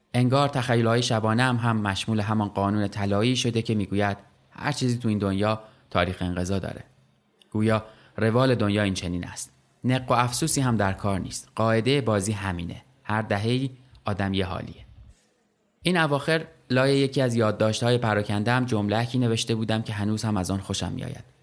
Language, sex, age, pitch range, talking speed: Persian, male, 20-39, 100-125 Hz, 160 wpm